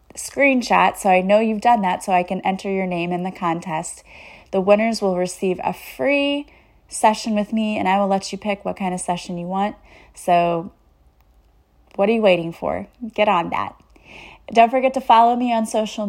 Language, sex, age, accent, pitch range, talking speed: English, female, 30-49, American, 185-215 Hz, 200 wpm